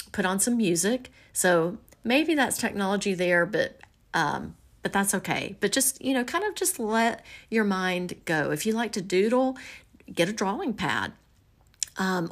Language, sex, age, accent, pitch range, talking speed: English, female, 40-59, American, 165-215 Hz, 170 wpm